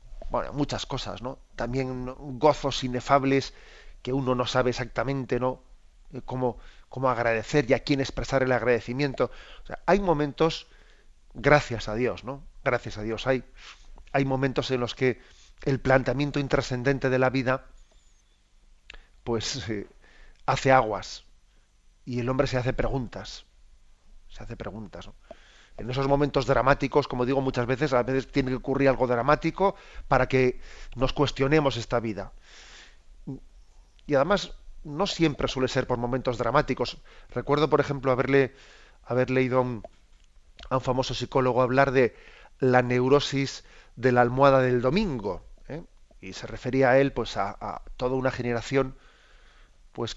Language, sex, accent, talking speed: Spanish, male, Spanish, 145 wpm